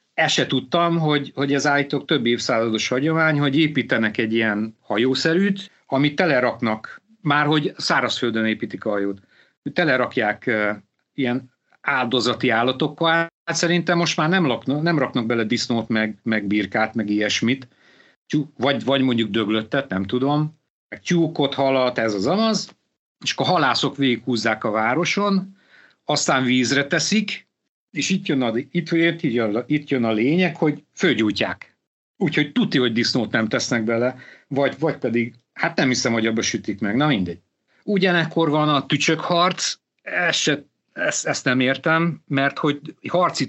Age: 50-69